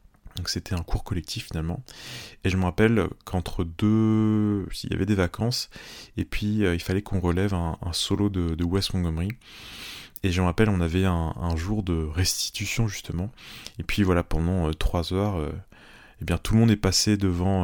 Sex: male